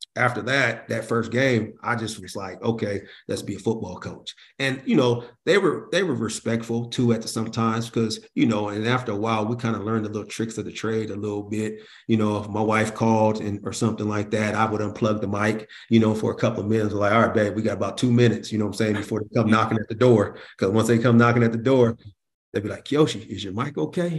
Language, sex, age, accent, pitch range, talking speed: English, male, 40-59, American, 105-120 Hz, 265 wpm